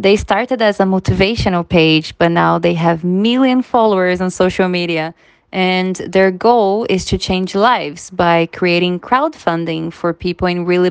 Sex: female